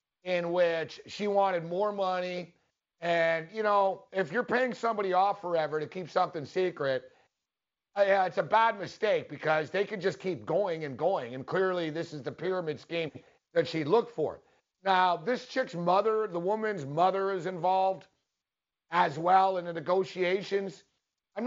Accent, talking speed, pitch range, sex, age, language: American, 160 wpm, 170-225 Hz, male, 50-69, English